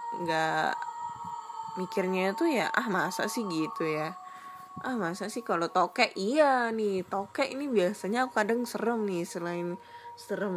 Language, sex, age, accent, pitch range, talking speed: Indonesian, female, 10-29, native, 175-240 Hz, 140 wpm